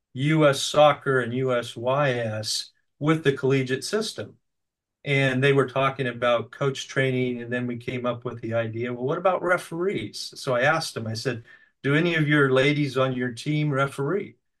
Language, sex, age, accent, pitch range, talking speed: English, male, 50-69, American, 120-140 Hz, 175 wpm